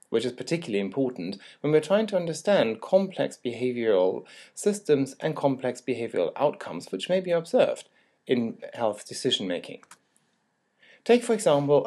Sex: male